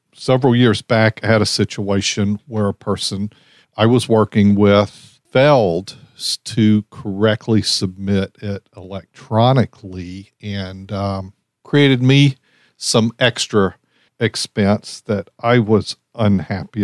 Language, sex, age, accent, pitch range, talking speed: English, male, 50-69, American, 100-130 Hz, 110 wpm